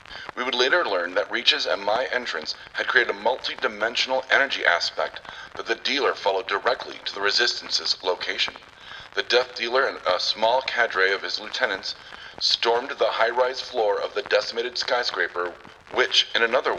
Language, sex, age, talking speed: English, male, 40-59, 160 wpm